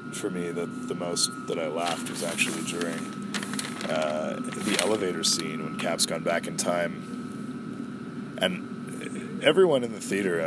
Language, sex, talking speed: English, male, 150 wpm